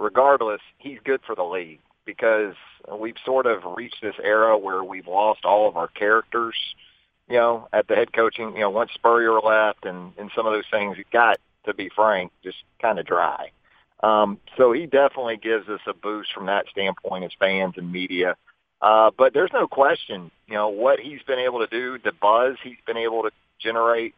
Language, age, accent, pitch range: English, 40-59, American, 105-130 Hz